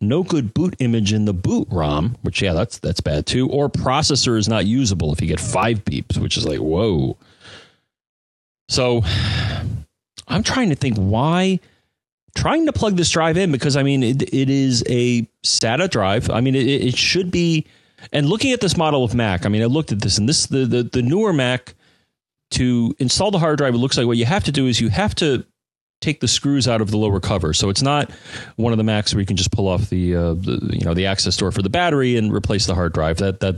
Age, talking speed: 30-49, 235 wpm